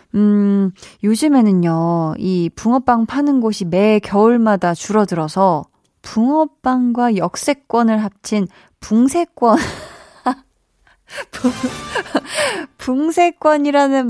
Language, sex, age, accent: Korean, female, 20-39, native